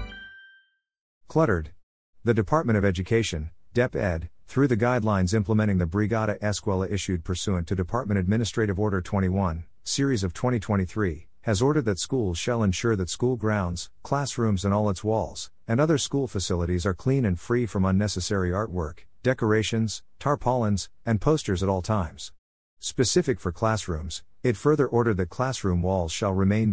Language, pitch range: English, 90-115 Hz